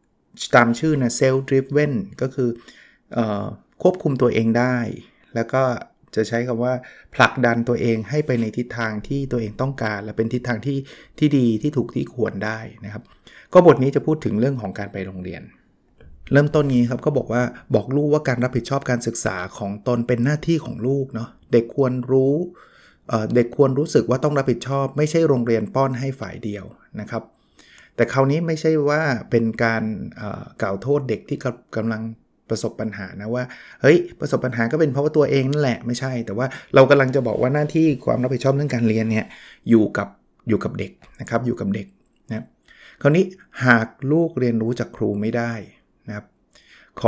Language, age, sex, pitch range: Thai, 20-39, male, 115-135 Hz